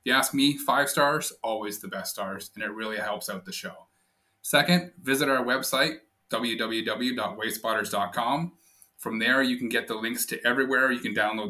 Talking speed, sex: 175 wpm, male